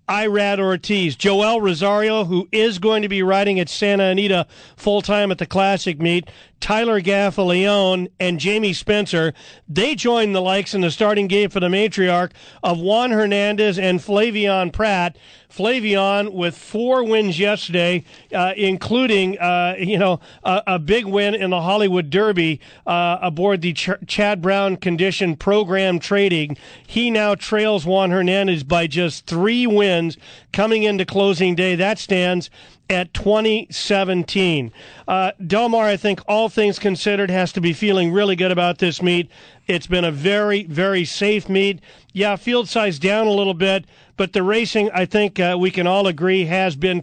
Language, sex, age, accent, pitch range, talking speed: English, male, 40-59, American, 180-205 Hz, 160 wpm